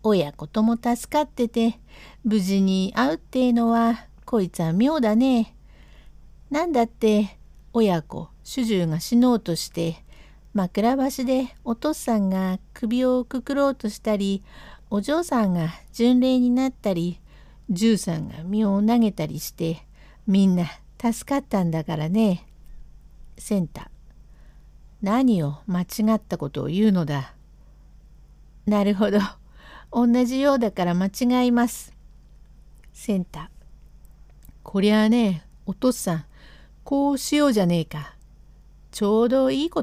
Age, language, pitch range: 60-79, Japanese, 180-245 Hz